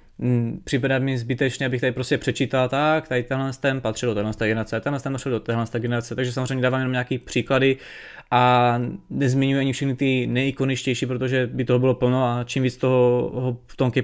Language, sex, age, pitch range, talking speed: Czech, male, 20-39, 125-135 Hz, 180 wpm